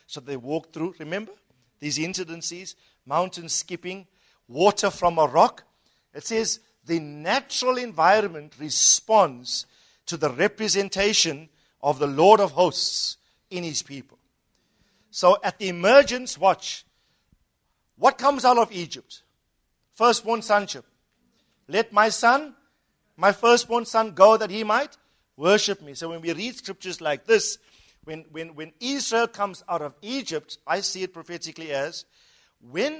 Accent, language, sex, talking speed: South African, English, male, 135 wpm